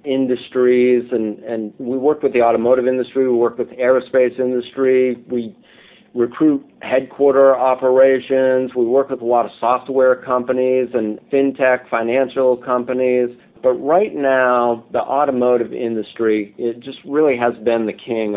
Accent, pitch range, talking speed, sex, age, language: American, 110-125 Hz, 145 wpm, male, 50-69, English